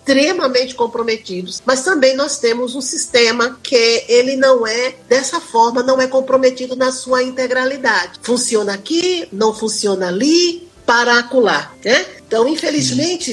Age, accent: 40-59, Brazilian